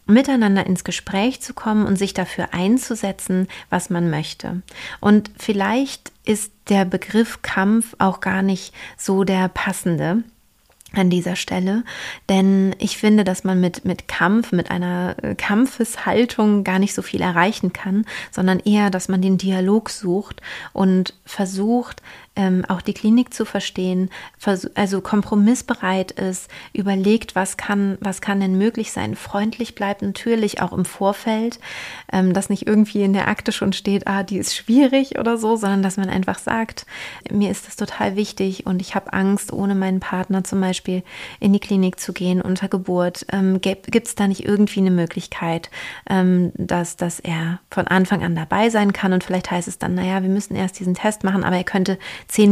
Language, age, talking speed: German, 30-49, 165 wpm